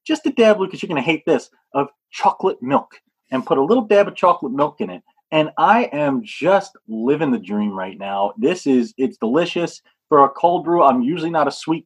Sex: male